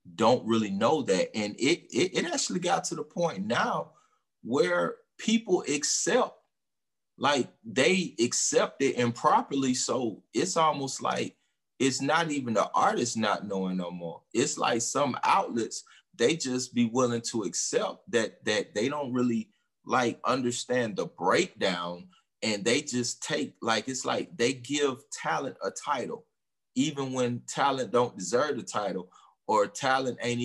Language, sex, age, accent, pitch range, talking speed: English, male, 30-49, American, 110-145 Hz, 150 wpm